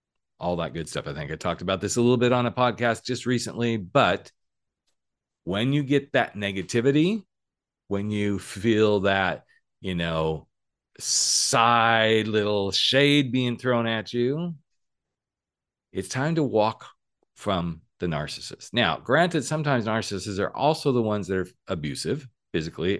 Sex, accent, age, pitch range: male, American, 40-59, 90-120 Hz